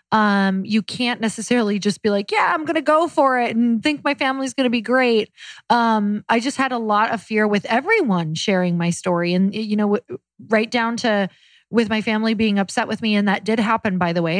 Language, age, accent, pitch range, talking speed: English, 20-39, American, 205-260 Hz, 230 wpm